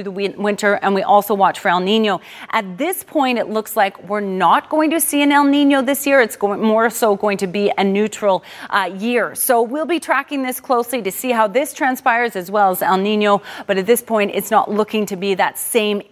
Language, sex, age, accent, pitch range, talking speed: English, female, 30-49, American, 210-275 Hz, 230 wpm